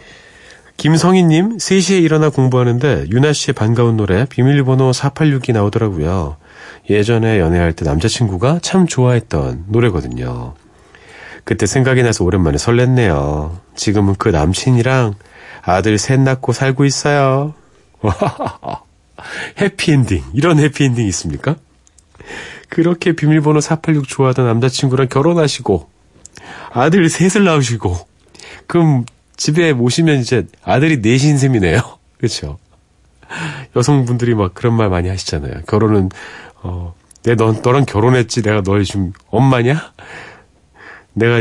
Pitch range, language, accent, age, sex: 95-140 Hz, Korean, native, 40-59, male